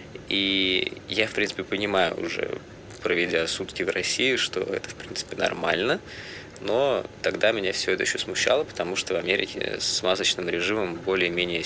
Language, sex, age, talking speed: Russian, male, 20-39, 155 wpm